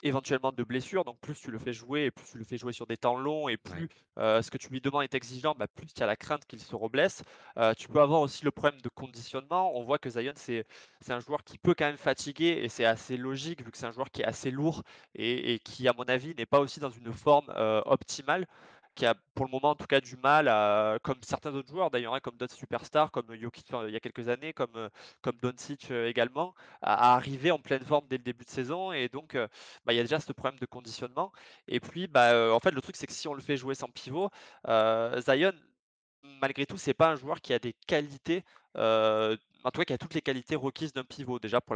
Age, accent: 20-39, French